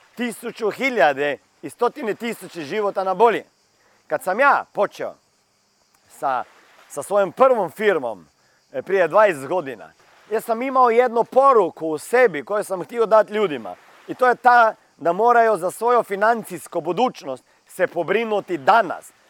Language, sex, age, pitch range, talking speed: Croatian, male, 40-59, 180-235 Hz, 140 wpm